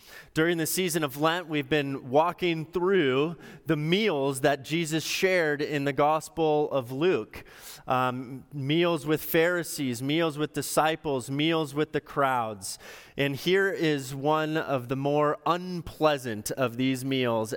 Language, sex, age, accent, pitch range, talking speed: English, male, 30-49, American, 120-155 Hz, 140 wpm